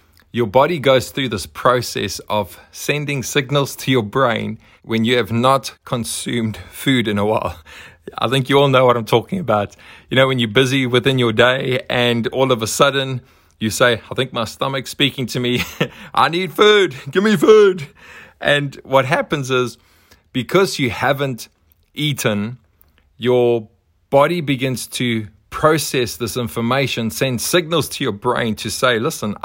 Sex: male